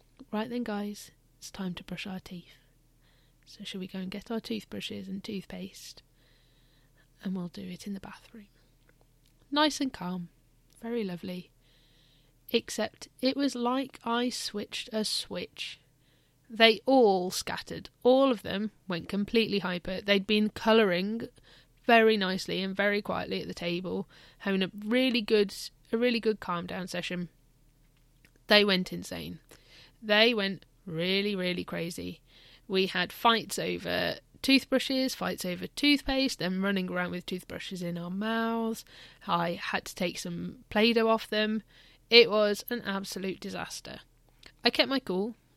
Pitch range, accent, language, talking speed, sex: 175-220 Hz, British, English, 145 wpm, female